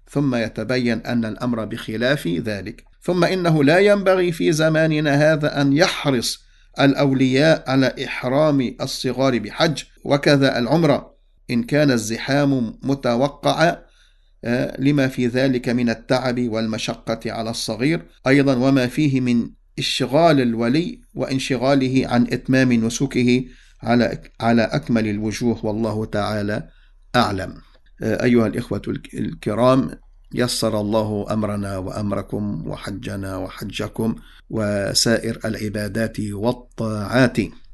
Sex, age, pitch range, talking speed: male, 50-69, 105-135 Hz, 100 wpm